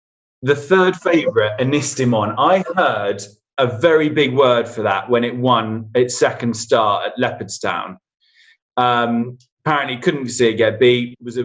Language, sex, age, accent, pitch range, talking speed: English, male, 20-39, British, 115-140 Hz, 145 wpm